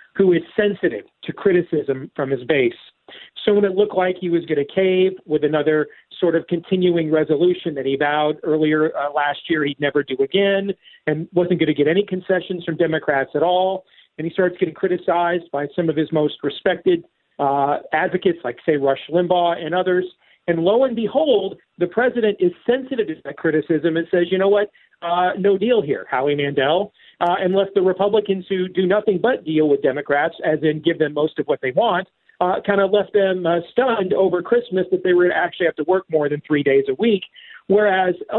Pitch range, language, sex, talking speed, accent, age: 160-200 Hz, English, male, 205 wpm, American, 40-59